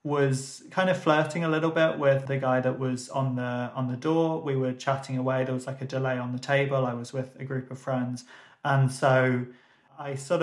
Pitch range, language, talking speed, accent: 135-170 Hz, English, 230 wpm, British